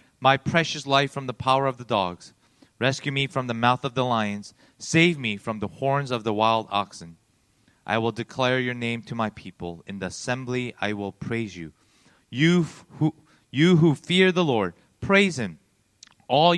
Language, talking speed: English, 190 wpm